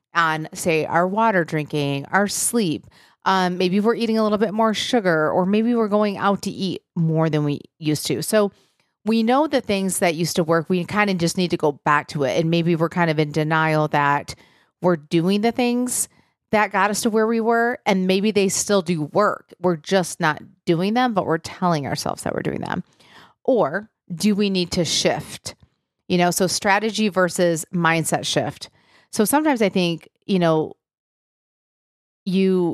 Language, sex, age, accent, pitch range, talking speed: English, female, 40-59, American, 165-200 Hz, 190 wpm